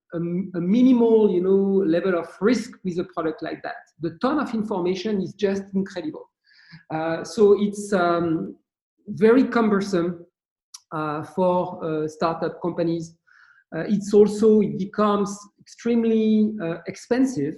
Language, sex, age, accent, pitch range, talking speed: English, male, 50-69, French, 170-210 Hz, 130 wpm